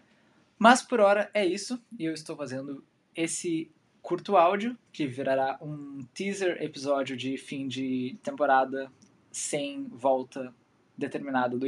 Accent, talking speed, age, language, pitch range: Brazilian, 130 wpm, 20-39, Portuguese, 125-160 Hz